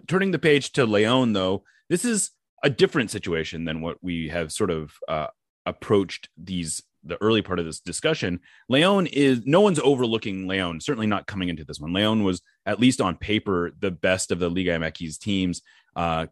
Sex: male